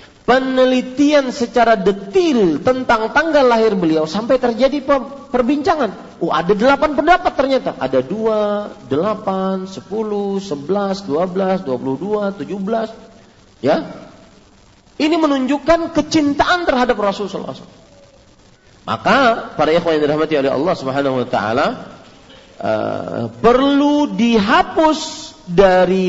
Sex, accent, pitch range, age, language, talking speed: male, Indonesian, 180-285 Hz, 40-59, English, 110 wpm